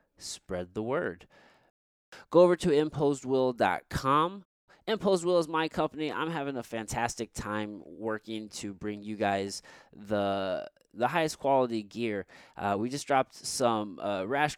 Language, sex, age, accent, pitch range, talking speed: English, male, 20-39, American, 100-135 Hz, 140 wpm